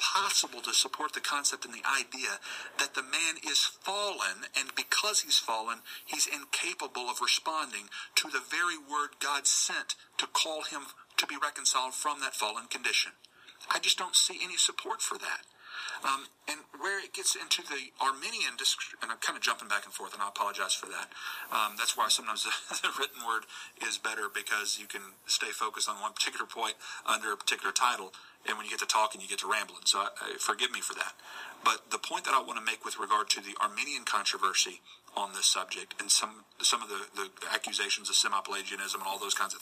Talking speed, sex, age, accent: 205 wpm, male, 40-59, American